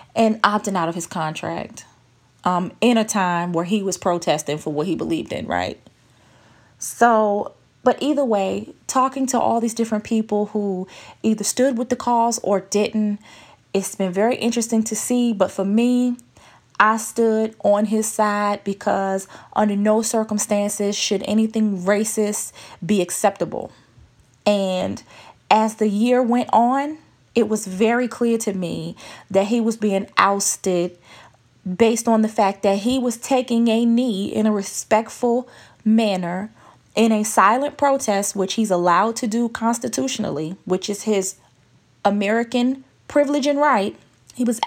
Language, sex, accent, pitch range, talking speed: English, female, American, 195-235 Hz, 150 wpm